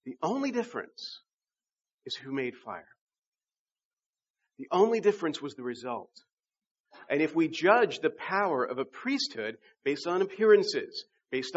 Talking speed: 135 wpm